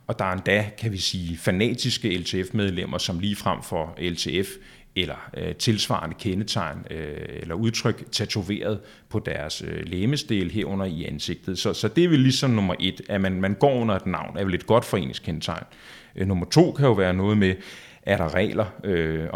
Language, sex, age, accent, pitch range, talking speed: Danish, male, 30-49, native, 95-115 Hz, 185 wpm